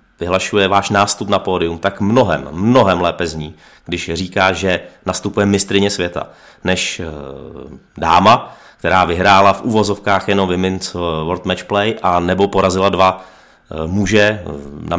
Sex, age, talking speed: male, 30-49, 130 wpm